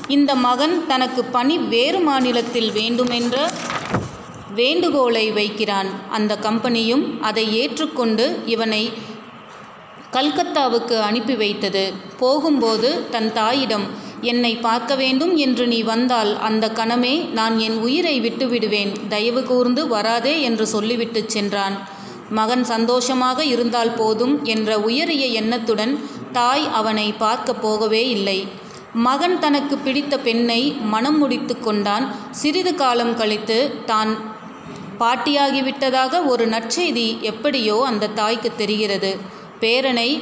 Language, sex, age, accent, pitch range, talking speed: Tamil, female, 30-49, native, 220-260 Hz, 100 wpm